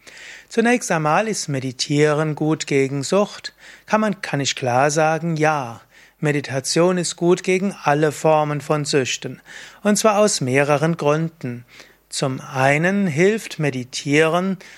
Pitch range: 145-190 Hz